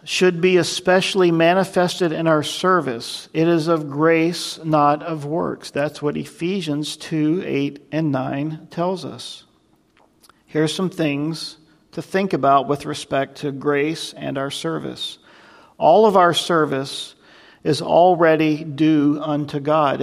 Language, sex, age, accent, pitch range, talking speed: English, male, 50-69, American, 150-185 Hz, 135 wpm